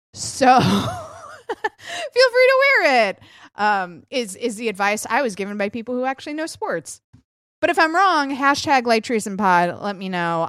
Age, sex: 20-39, female